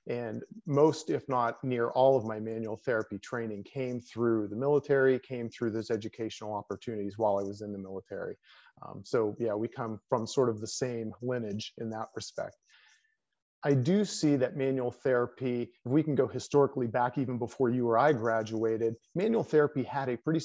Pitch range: 115-140 Hz